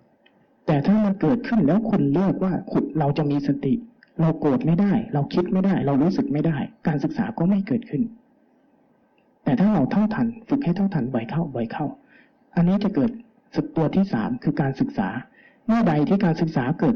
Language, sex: Thai, male